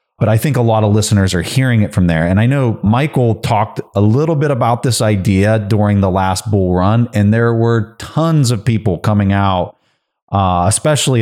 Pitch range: 95-120 Hz